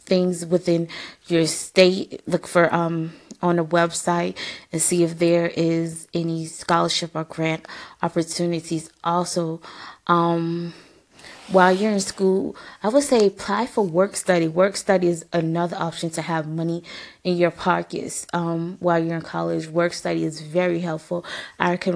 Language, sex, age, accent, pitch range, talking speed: English, female, 20-39, American, 165-185 Hz, 155 wpm